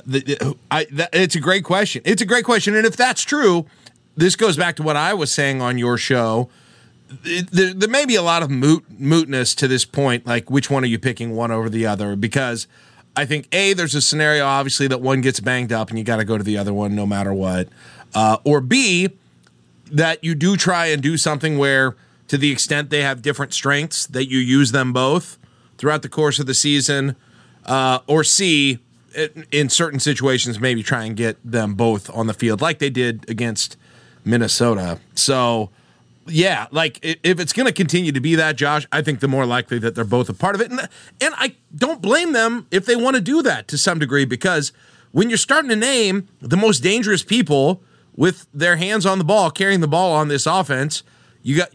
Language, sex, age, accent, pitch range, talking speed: English, male, 30-49, American, 125-175 Hz, 210 wpm